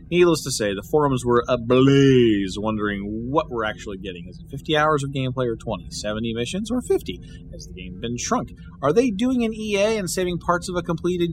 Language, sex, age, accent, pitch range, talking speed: English, male, 30-49, American, 105-155 Hz, 210 wpm